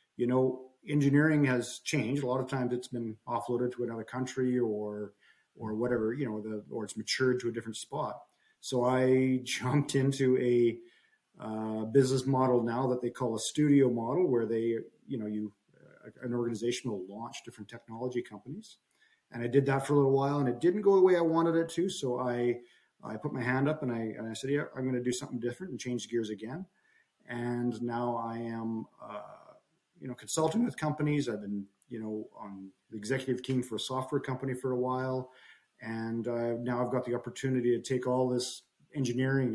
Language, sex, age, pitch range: English, male, 40-59, 115-130 Hz